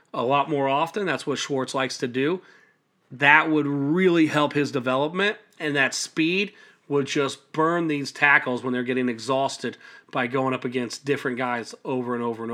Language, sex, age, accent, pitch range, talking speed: English, male, 40-59, American, 125-150 Hz, 180 wpm